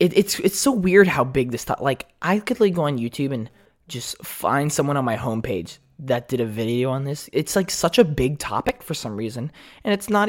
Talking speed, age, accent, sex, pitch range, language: 245 wpm, 20-39, American, male, 110-165 Hz, English